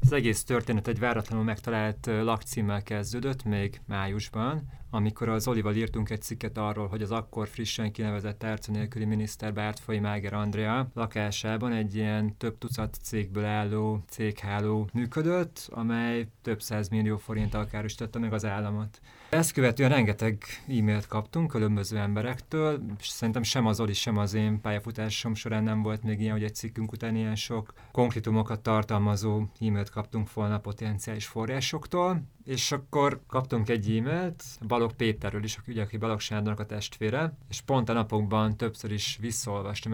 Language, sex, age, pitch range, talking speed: Hungarian, male, 30-49, 105-120 Hz, 150 wpm